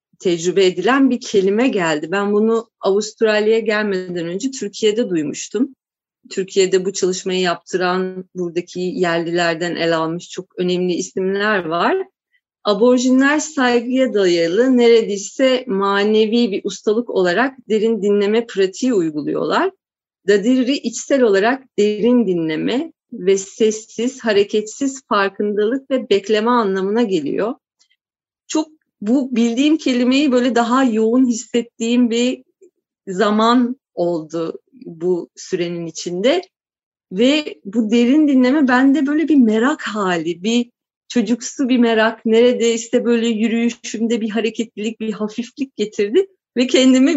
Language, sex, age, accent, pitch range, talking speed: Turkish, female, 40-59, native, 195-255 Hz, 110 wpm